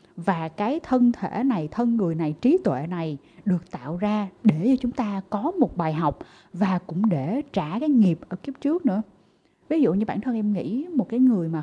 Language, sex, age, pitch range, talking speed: Vietnamese, female, 20-39, 170-245 Hz, 220 wpm